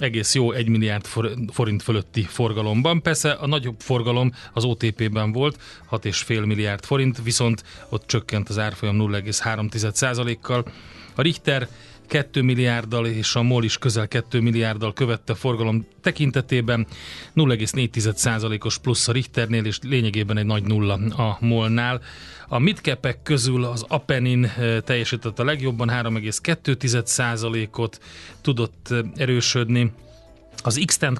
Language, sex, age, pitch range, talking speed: Hungarian, male, 30-49, 110-130 Hz, 120 wpm